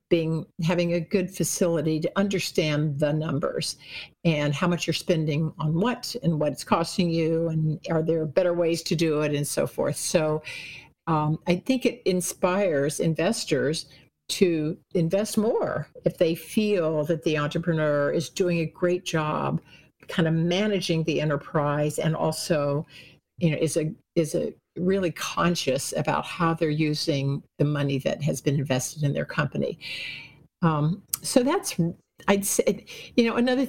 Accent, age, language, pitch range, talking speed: American, 60-79, English, 155-190 Hz, 160 wpm